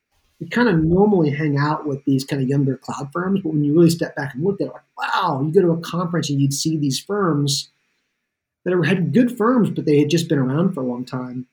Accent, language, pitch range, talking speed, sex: American, English, 140-165 Hz, 255 wpm, male